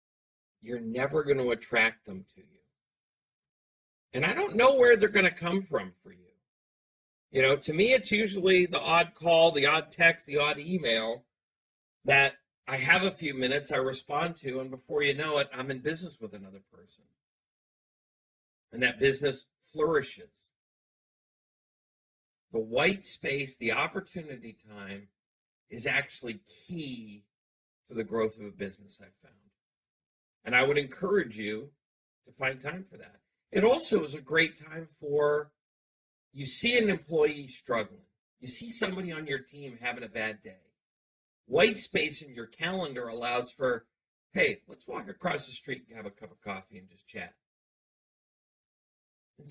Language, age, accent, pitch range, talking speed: English, 40-59, American, 115-170 Hz, 160 wpm